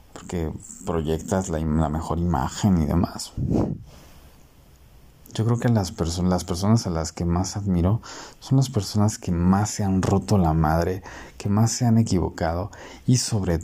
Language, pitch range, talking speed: Spanish, 80-100 Hz, 160 wpm